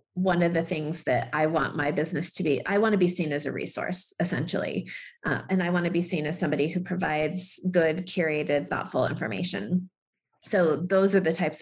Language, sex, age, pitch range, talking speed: English, female, 30-49, 155-185 Hz, 205 wpm